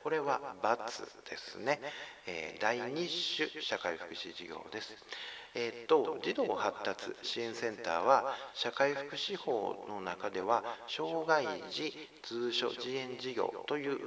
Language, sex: Japanese, male